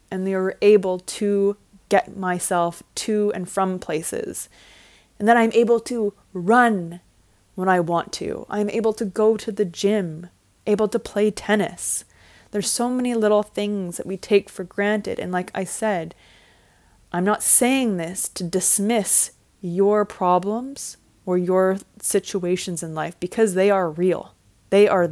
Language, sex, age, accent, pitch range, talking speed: English, female, 20-39, American, 180-235 Hz, 155 wpm